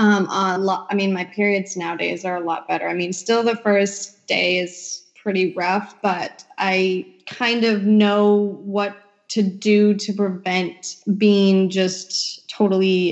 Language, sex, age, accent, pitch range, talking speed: English, female, 20-39, American, 185-210 Hz, 150 wpm